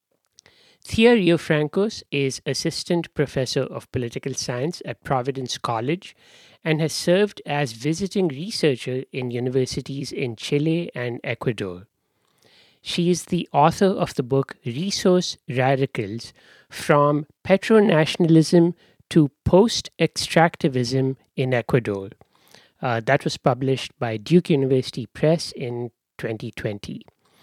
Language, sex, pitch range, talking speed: English, male, 125-160 Hz, 105 wpm